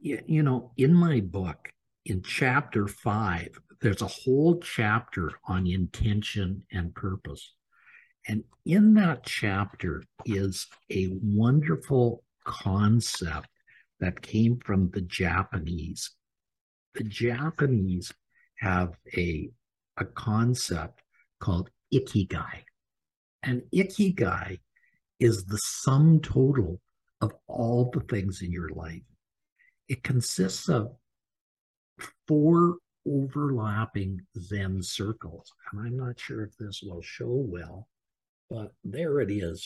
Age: 60-79